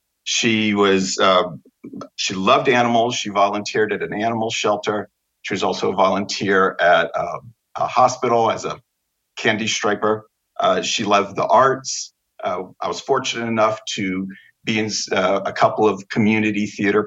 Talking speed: 155 wpm